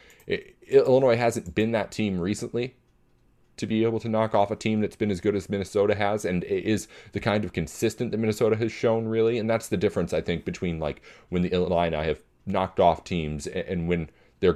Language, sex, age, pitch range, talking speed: English, male, 30-49, 85-110 Hz, 205 wpm